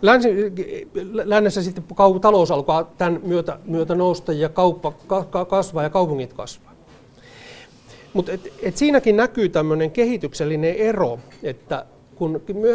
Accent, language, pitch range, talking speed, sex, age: native, Finnish, 155-215 Hz, 120 wpm, male, 60-79